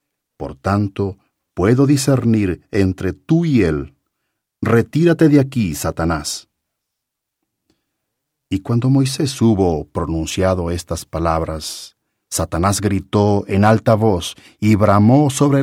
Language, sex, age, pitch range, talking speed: English, male, 50-69, 90-130 Hz, 105 wpm